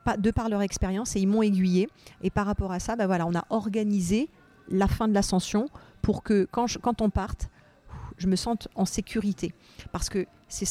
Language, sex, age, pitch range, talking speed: French, female, 40-59, 175-215 Hz, 205 wpm